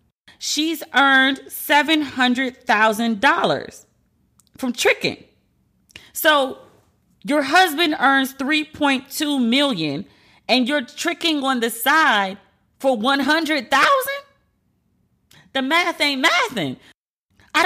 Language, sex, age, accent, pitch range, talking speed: English, female, 30-49, American, 240-300 Hz, 80 wpm